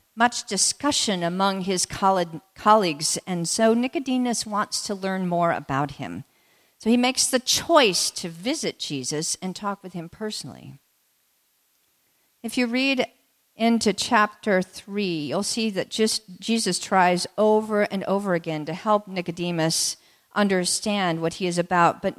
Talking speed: 140 wpm